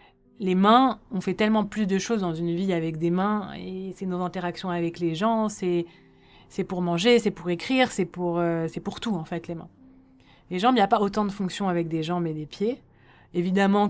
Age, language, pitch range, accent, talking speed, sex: 30-49, French, 170-205 Hz, French, 230 wpm, female